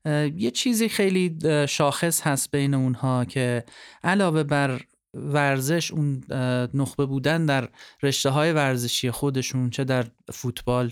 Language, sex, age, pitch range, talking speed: Persian, male, 30-49, 130-150 Hz, 115 wpm